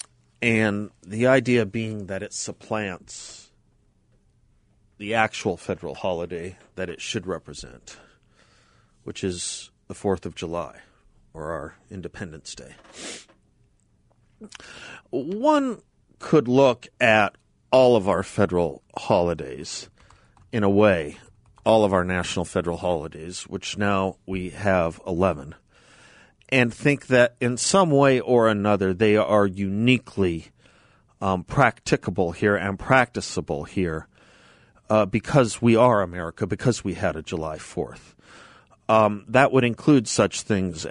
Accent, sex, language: American, male, English